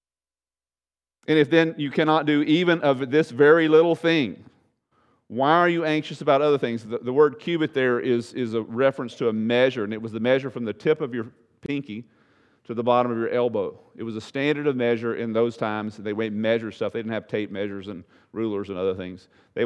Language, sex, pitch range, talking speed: English, male, 110-145 Hz, 220 wpm